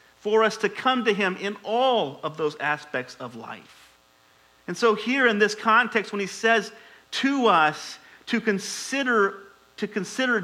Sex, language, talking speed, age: male, English, 160 wpm, 40-59